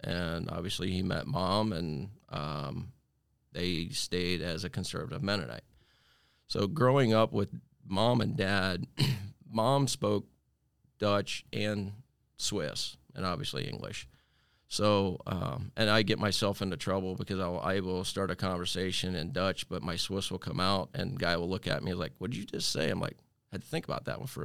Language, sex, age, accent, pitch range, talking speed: English, male, 40-59, American, 90-115 Hz, 180 wpm